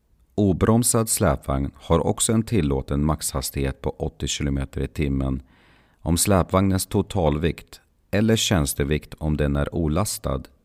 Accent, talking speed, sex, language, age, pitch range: native, 105 wpm, male, Swedish, 40-59, 70-100 Hz